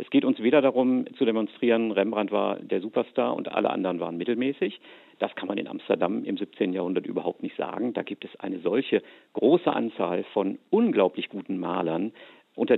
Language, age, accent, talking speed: German, 50-69, German, 185 wpm